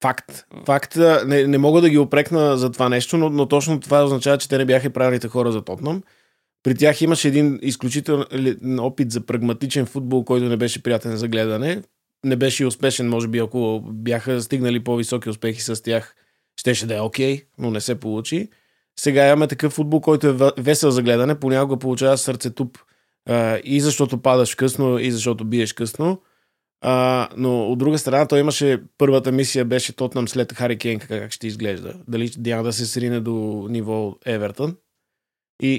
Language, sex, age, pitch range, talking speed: Bulgarian, male, 20-39, 115-140 Hz, 180 wpm